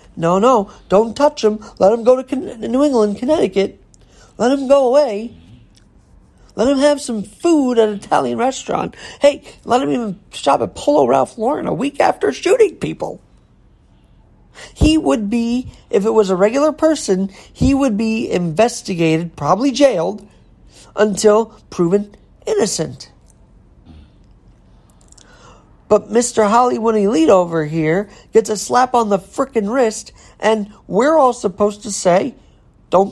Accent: American